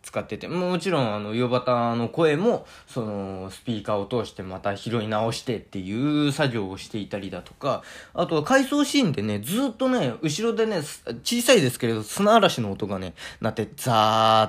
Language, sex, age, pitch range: Japanese, male, 20-39, 110-170 Hz